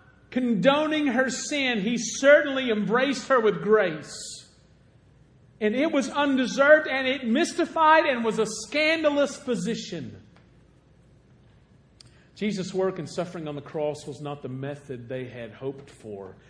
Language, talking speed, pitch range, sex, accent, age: English, 130 wpm, 195-260 Hz, male, American, 50-69